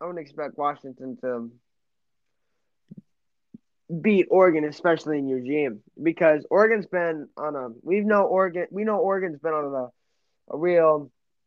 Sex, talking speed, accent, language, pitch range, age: male, 135 wpm, American, English, 145-180 Hz, 20-39